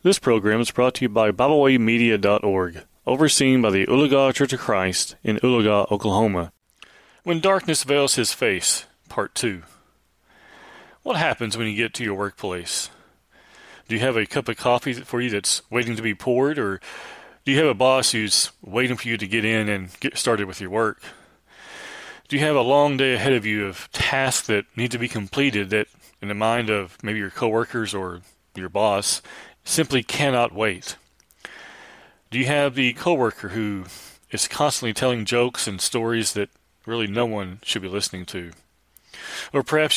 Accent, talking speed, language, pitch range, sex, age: American, 175 wpm, English, 105-130 Hz, male, 30-49